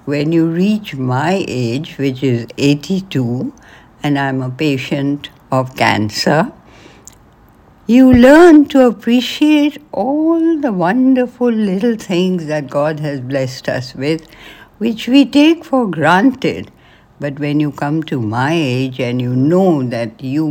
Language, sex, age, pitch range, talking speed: English, female, 60-79, 140-210 Hz, 135 wpm